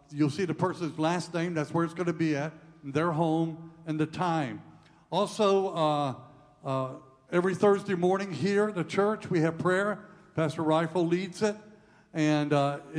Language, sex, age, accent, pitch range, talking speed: English, male, 60-79, American, 150-190 Hz, 170 wpm